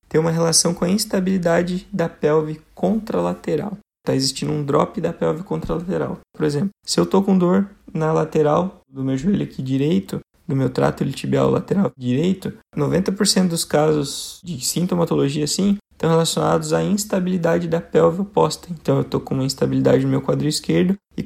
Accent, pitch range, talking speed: Brazilian, 135-175 Hz, 165 wpm